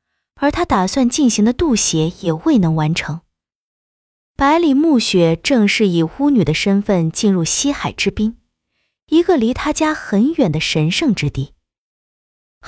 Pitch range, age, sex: 165-265 Hz, 20-39, female